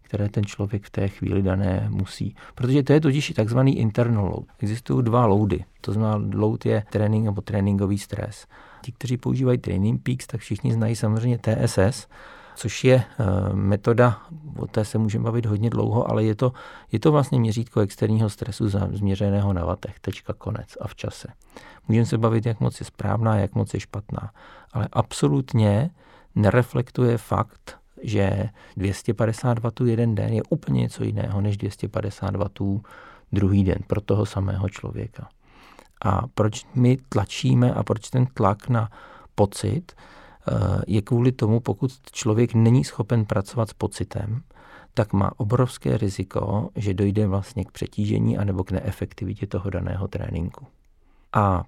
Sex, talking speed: male, 155 wpm